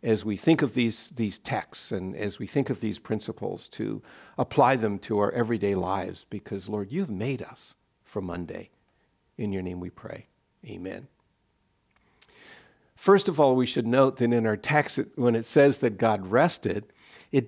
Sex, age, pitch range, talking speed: male, 50-69, 110-135 Hz, 180 wpm